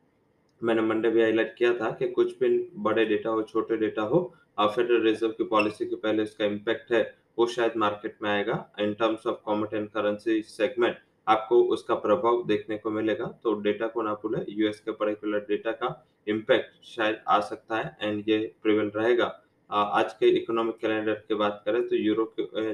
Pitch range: 105-115 Hz